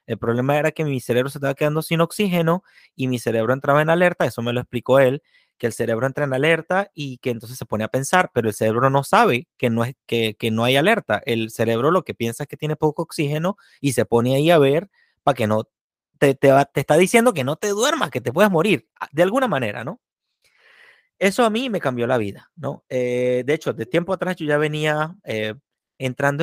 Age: 30-49